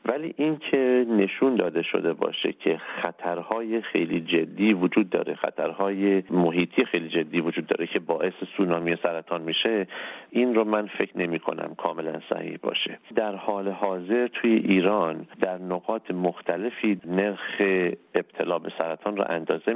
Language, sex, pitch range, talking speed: Persian, male, 85-110 Hz, 140 wpm